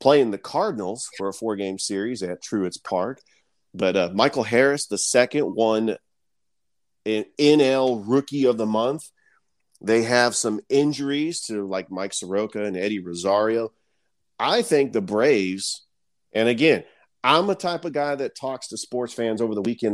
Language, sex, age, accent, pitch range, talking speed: English, male, 40-59, American, 100-125 Hz, 165 wpm